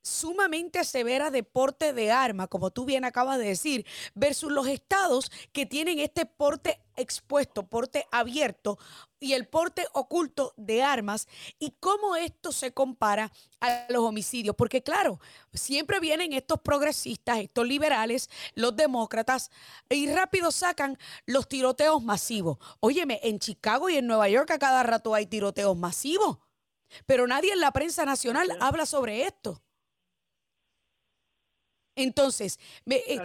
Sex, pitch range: female, 230-300 Hz